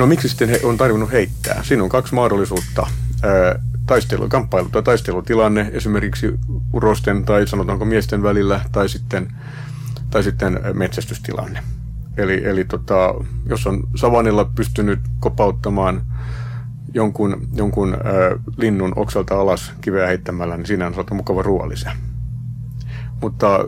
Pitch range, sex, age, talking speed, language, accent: 90-120 Hz, male, 30-49, 120 wpm, Finnish, native